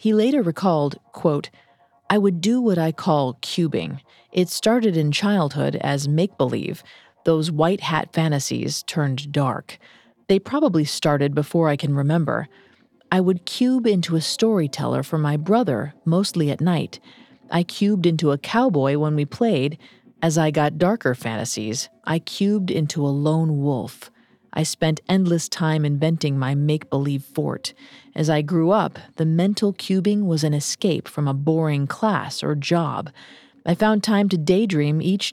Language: English